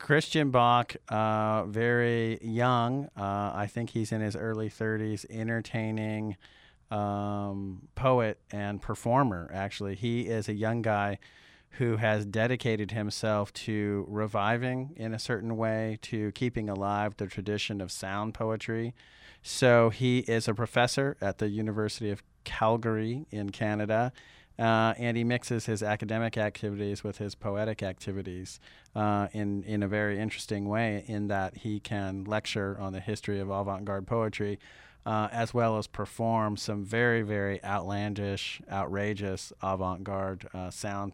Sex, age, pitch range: male, 40-59, 100-115 Hz